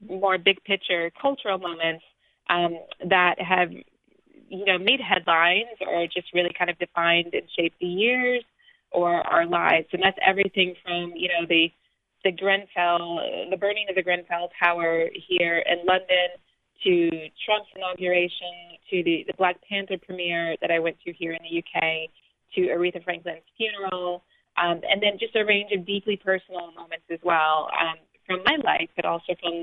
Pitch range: 170-195 Hz